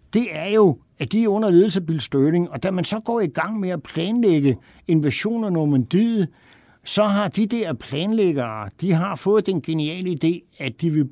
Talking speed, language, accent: 200 wpm, Danish, native